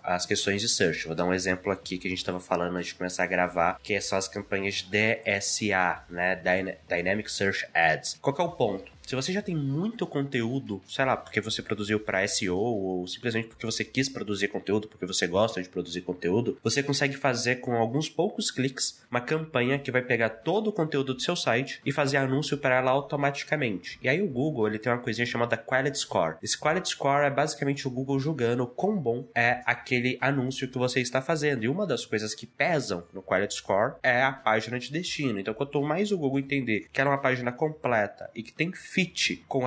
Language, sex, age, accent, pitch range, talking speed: Portuguese, male, 20-39, Brazilian, 110-140 Hz, 210 wpm